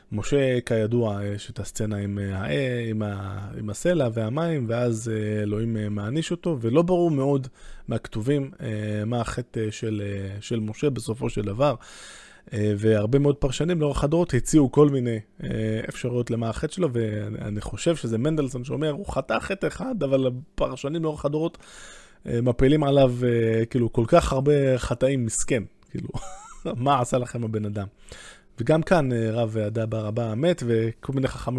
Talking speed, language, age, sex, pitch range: 150 wpm, Hebrew, 20-39, male, 110-135 Hz